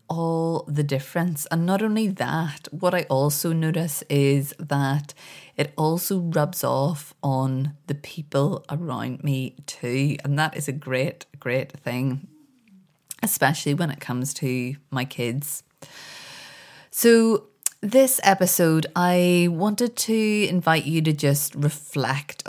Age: 30-49